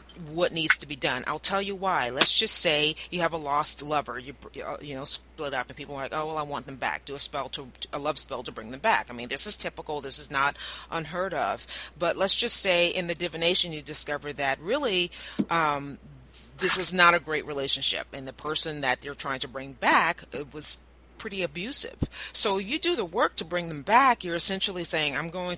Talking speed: 230 wpm